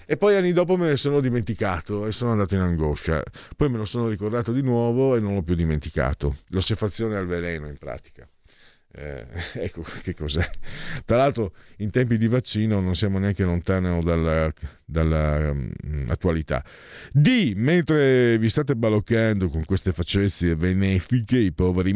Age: 50-69